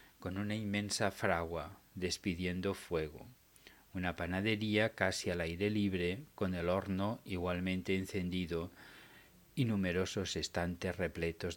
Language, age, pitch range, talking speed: Spanish, 40-59, 85-105 Hz, 110 wpm